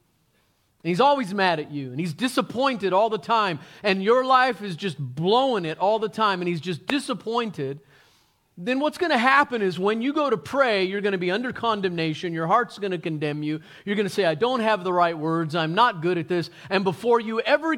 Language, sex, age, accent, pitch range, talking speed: English, male, 40-59, American, 130-215 Hz, 225 wpm